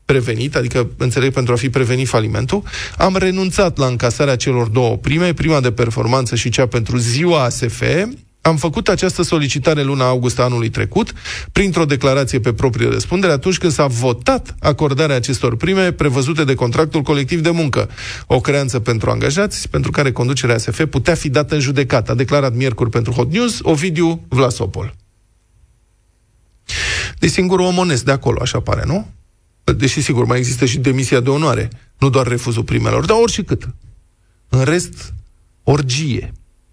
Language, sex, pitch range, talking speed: Romanian, male, 120-160 Hz, 155 wpm